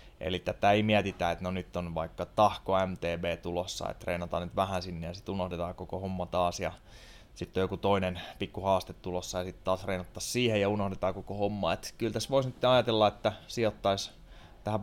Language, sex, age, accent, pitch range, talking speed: Finnish, male, 20-39, native, 90-110 Hz, 190 wpm